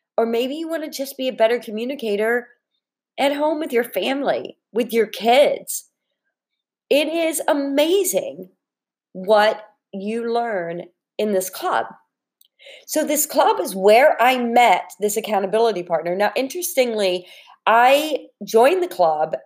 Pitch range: 190-260 Hz